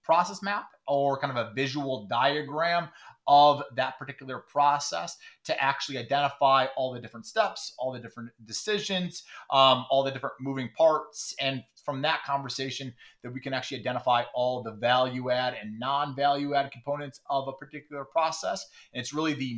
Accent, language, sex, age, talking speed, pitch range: American, English, male, 30-49, 165 wpm, 125-145 Hz